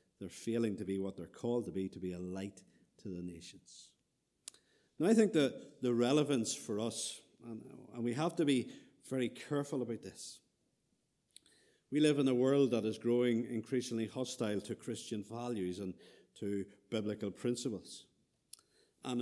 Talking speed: 160 wpm